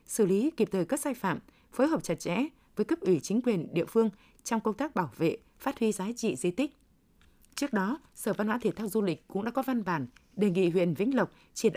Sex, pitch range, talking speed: female, 180-240 Hz, 250 wpm